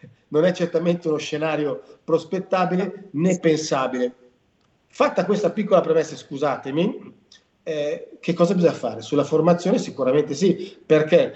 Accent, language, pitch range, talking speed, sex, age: native, Italian, 145-190 Hz, 120 wpm, male, 40-59